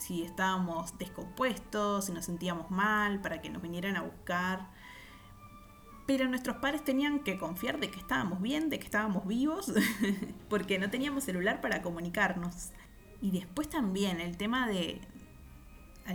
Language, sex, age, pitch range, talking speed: Spanish, female, 20-39, 175-205 Hz, 150 wpm